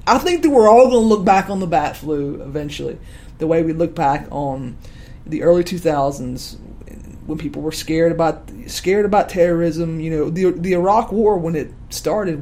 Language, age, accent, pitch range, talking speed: English, 30-49, American, 160-210 Hz, 200 wpm